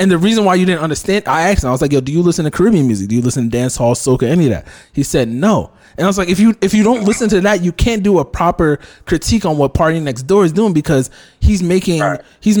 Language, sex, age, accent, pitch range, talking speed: English, male, 20-39, American, 130-185 Hz, 295 wpm